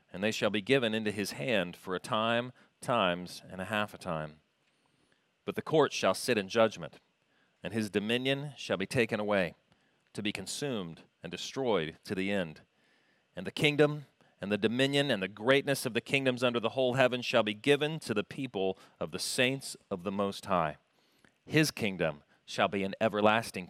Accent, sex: American, male